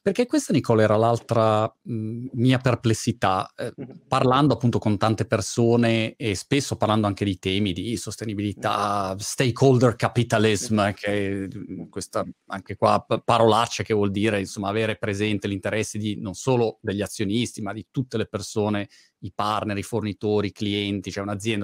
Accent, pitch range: native, 105-125 Hz